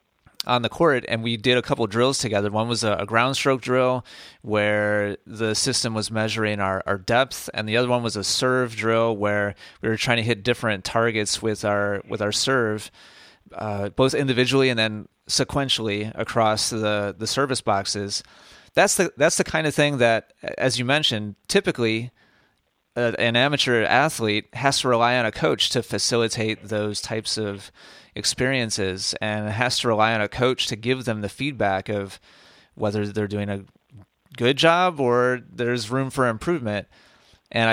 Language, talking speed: English, 175 wpm